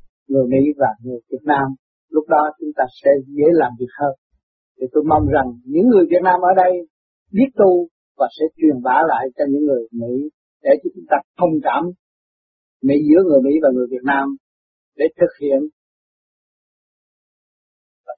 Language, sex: Vietnamese, male